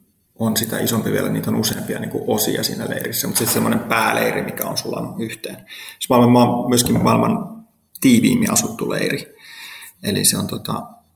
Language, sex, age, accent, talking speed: Finnish, male, 30-49, native, 150 wpm